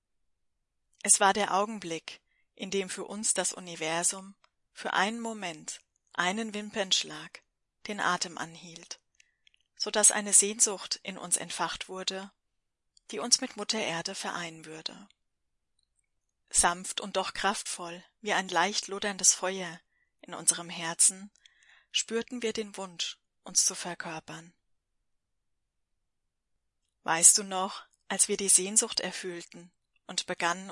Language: German